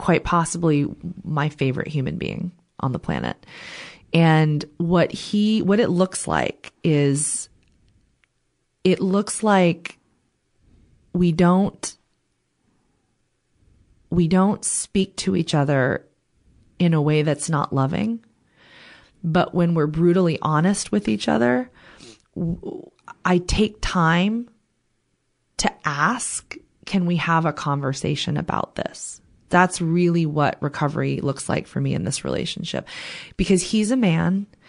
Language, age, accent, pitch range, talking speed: English, 30-49, American, 150-190 Hz, 120 wpm